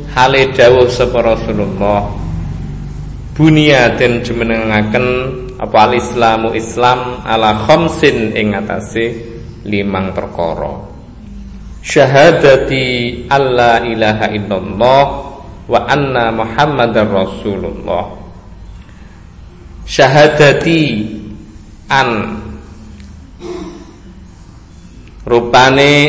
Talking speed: 55 wpm